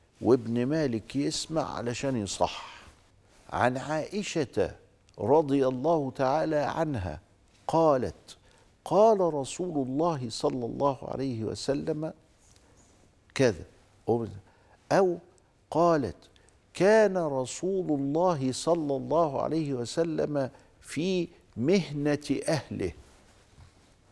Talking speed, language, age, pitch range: 80 wpm, Arabic, 50-69, 100-150 Hz